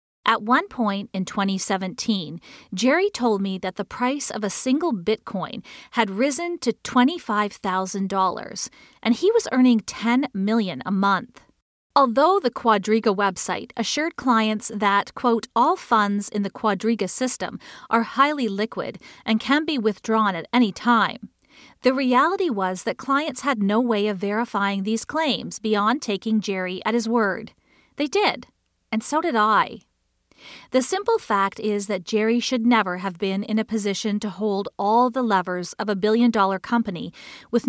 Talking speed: 155 wpm